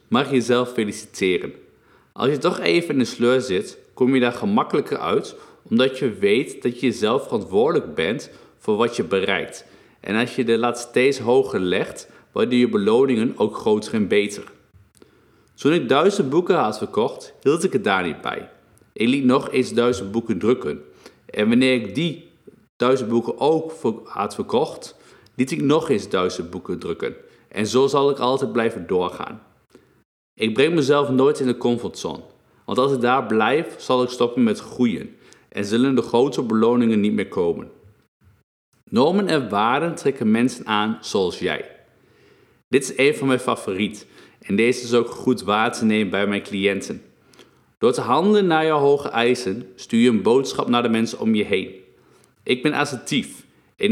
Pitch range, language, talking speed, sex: 115-140 Hz, Dutch, 175 wpm, male